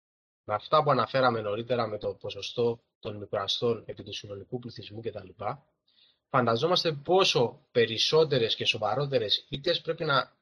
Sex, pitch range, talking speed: male, 115-150 Hz, 125 wpm